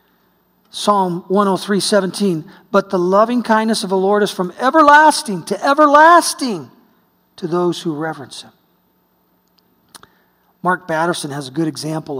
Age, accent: 40-59, American